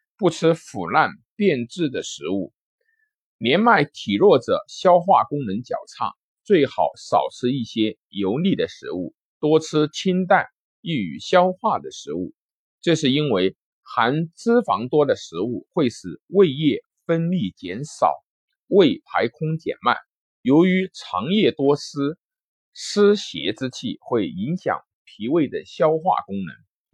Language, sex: Chinese, male